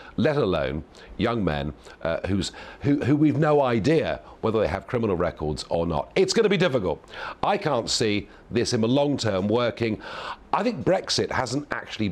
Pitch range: 80-130 Hz